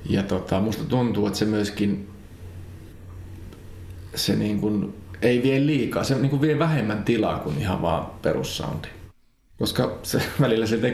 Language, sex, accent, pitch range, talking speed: Finnish, male, native, 90-115 Hz, 150 wpm